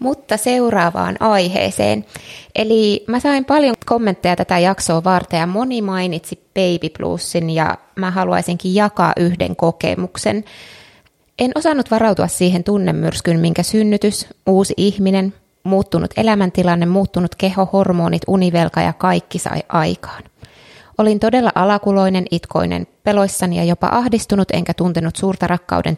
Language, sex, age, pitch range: Finnish, female, 20-39, 170-210 Hz